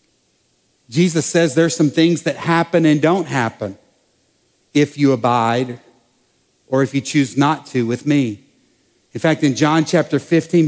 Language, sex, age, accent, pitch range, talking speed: English, male, 50-69, American, 140-170 Hz, 150 wpm